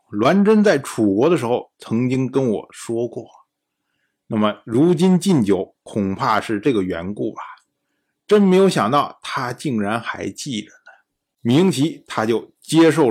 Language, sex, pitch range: Chinese, male, 110-175 Hz